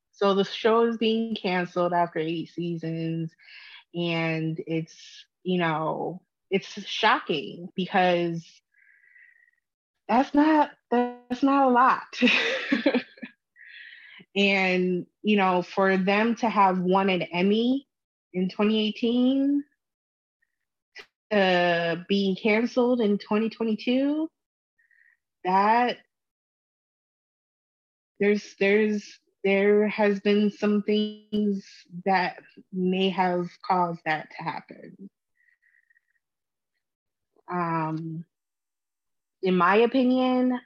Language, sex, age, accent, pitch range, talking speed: English, female, 20-39, American, 175-235 Hz, 85 wpm